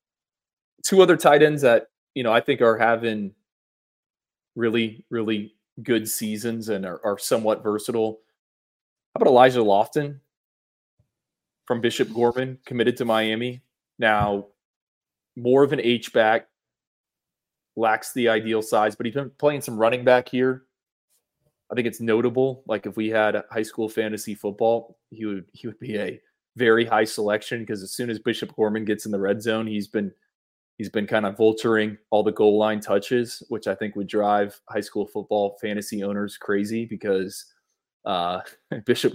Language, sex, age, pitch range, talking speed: English, male, 20-39, 105-120 Hz, 160 wpm